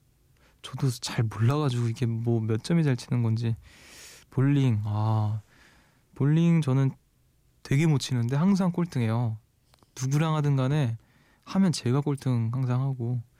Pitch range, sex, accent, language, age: 115-155 Hz, male, native, Korean, 20-39